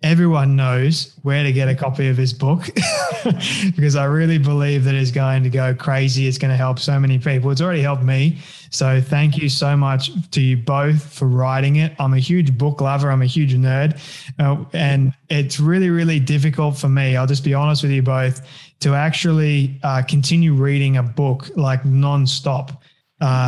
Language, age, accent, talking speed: English, 20-39, Australian, 195 wpm